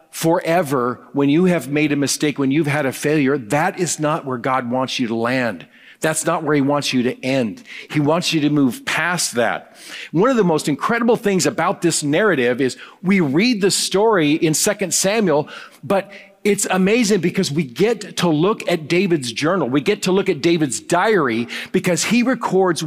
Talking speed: 195 wpm